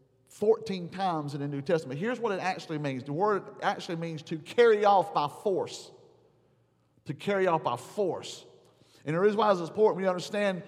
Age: 50-69